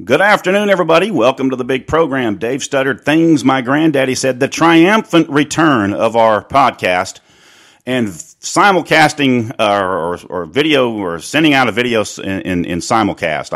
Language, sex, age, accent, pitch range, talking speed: English, male, 40-59, American, 100-135 Hz, 155 wpm